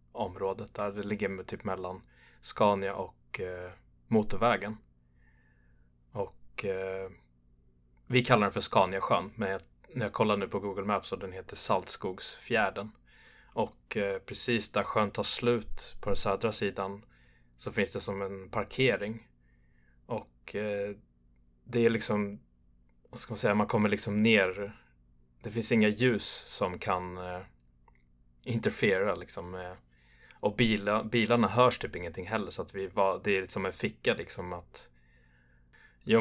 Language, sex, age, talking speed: Swedish, male, 20-39, 150 wpm